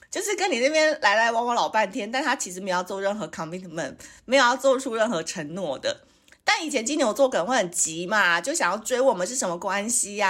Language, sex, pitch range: Chinese, female, 175-270 Hz